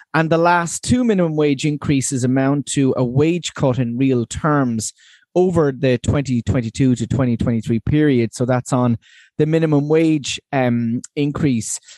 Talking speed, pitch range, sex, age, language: 145 wpm, 130-160 Hz, male, 30-49, English